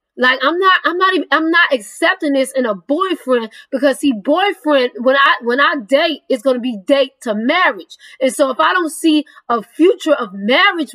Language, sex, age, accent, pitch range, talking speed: English, female, 20-39, American, 270-335 Hz, 205 wpm